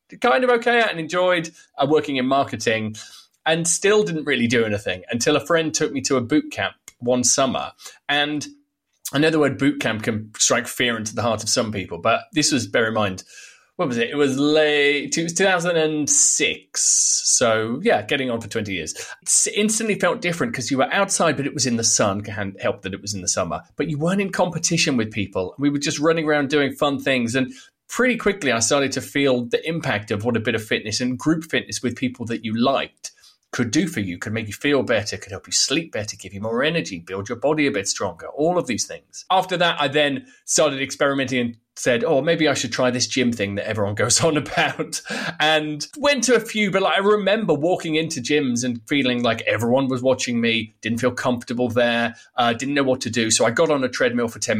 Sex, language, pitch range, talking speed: male, English, 120-160 Hz, 225 wpm